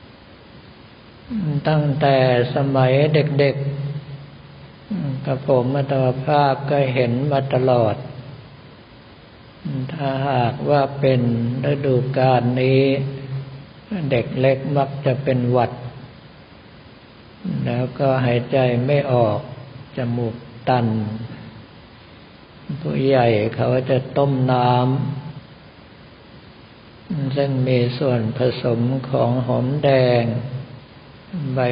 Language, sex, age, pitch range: Thai, male, 60-79, 125-140 Hz